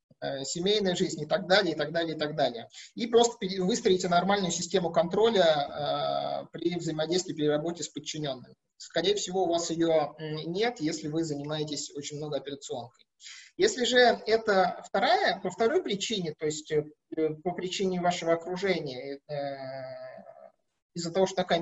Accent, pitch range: native, 155-215 Hz